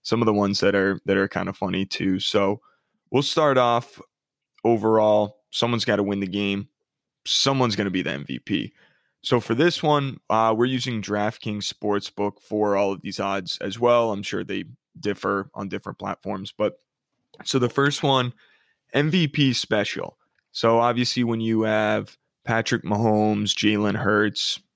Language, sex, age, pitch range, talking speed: English, male, 20-39, 105-125 Hz, 165 wpm